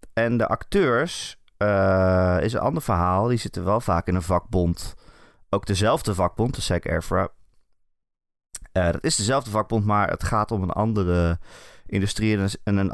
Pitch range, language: 85-110 Hz, Dutch